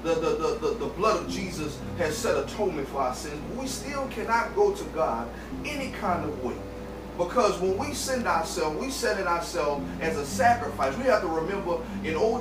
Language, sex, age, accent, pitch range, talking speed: English, male, 30-49, American, 170-245 Hz, 185 wpm